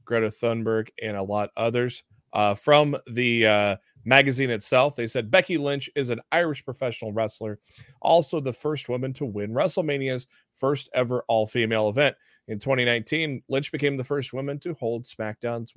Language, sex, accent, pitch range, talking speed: English, male, American, 115-140 Hz, 160 wpm